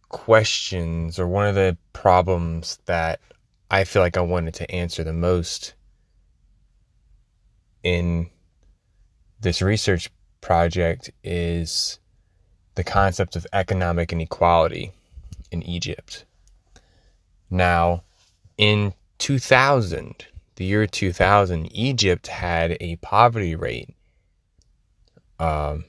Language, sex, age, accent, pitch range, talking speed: English, male, 20-39, American, 85-95 Hz, 95 wpm